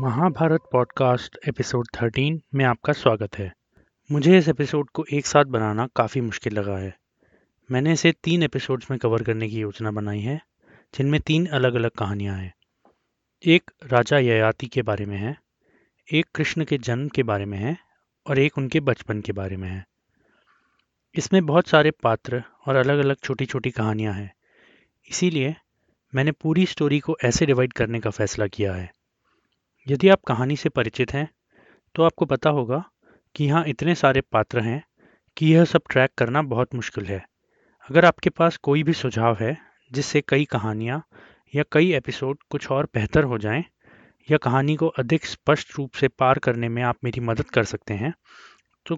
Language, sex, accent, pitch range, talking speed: Hindi, male, native, 115-155 Hz, 175 wpm